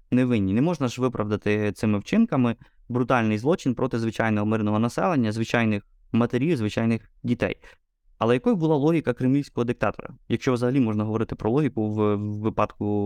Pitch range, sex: 110-130 Hz, male